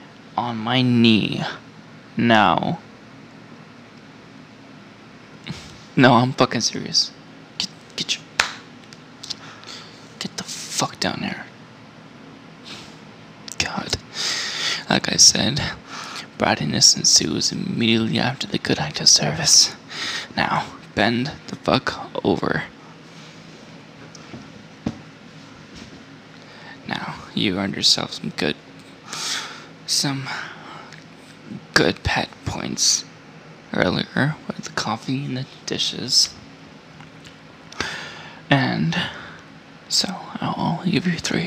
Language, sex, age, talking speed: English, male, 20-39, 80 wpm